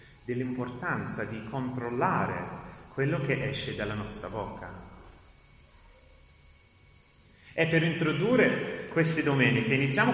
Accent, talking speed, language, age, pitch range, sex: native, 90 wpm, Italian, 30-49, 105-150 Hz, male